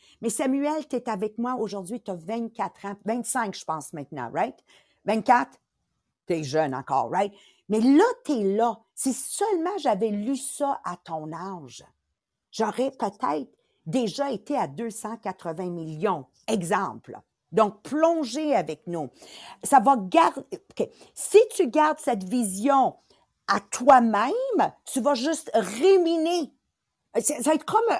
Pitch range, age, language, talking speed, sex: 195-275 Hz, 50-69, English, 145 wpm, female